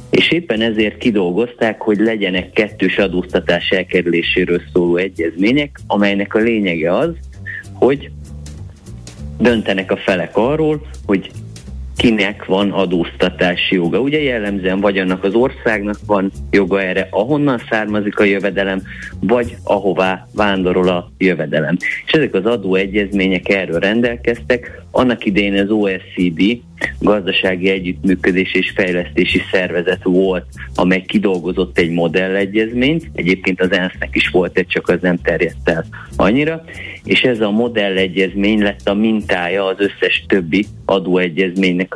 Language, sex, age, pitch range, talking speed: Hungarian, male, 30-49, 90-105 Hz, 125 wpm